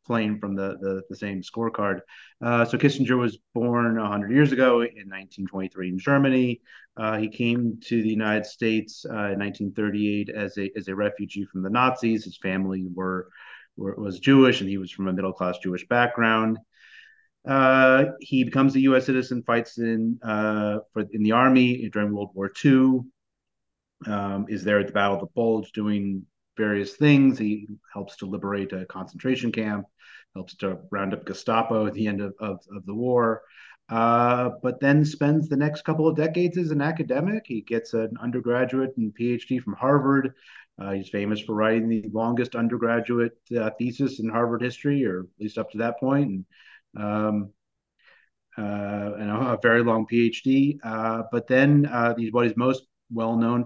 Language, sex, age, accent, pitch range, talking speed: English, male, 30-49, American, 105-125 Hz, 180 wpm